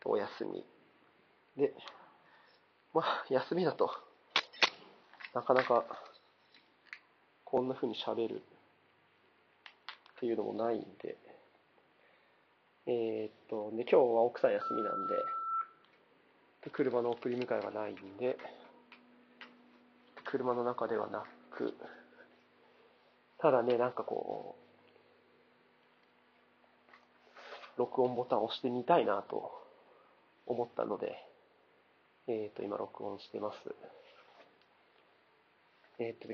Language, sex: Japanese, male